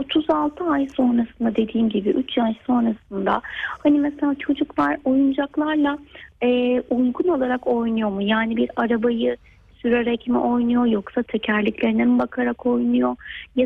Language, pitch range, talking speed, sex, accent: Turkish, 230-270 Hz, 125 wpm, female, native